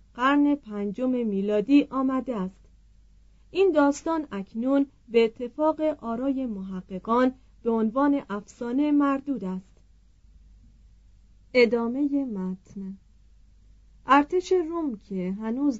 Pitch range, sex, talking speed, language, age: 200-275 Hz, female, 85 wpm, Persian, 40-59